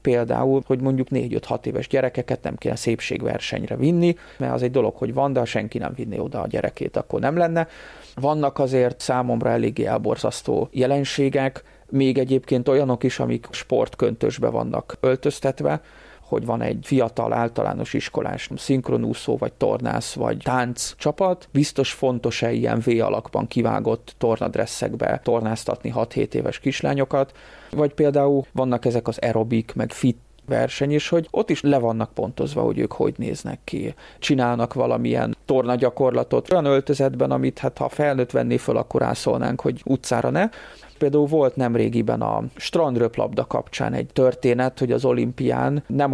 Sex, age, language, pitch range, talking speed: male, 30-49, Hungarian, 120-140 Hz, 145 wpm